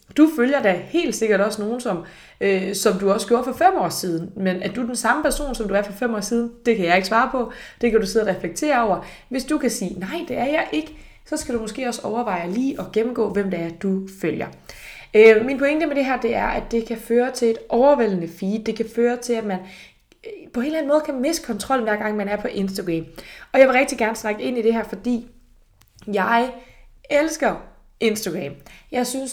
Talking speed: 240 wpm